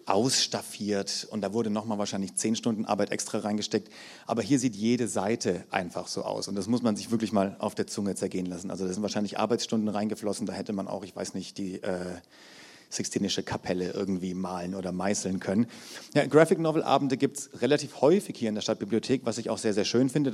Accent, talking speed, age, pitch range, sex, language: German, 205 wpm, 40-59, 100-125 Hz, male, German